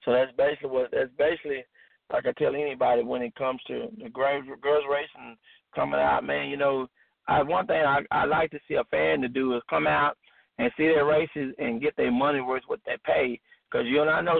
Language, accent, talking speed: English, American, 225 wpm